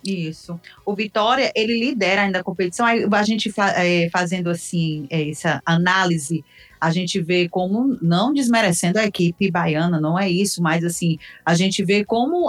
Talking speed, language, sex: 175 wpm, Portuguese, female